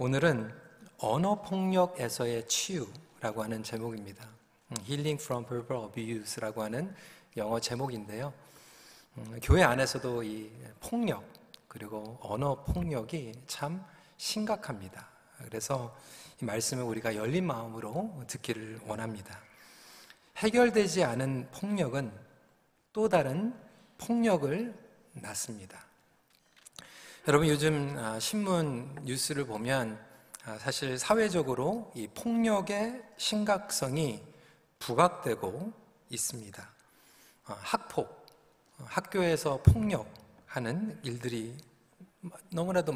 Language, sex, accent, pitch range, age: Korean, male, native, 115-170 Hz, 40-59